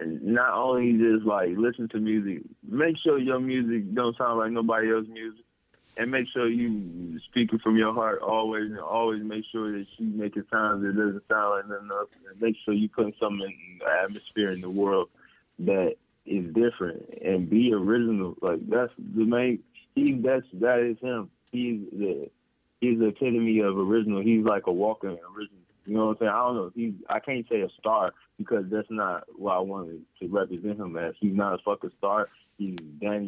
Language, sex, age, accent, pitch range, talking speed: English, male, 20-39, American, 100-115 Hz, 205 wpm